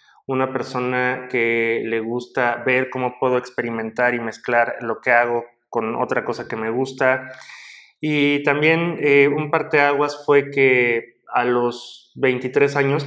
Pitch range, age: 125-145 Hz, 20-39